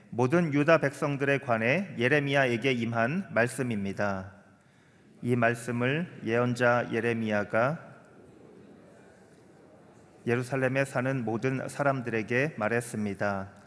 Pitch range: 115-145 Hz